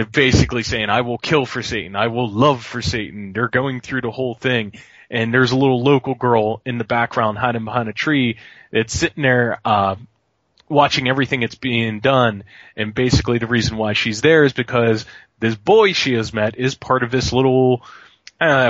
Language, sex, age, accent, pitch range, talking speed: English, male, 20-39, American, 110-135 Hz, 195 wpm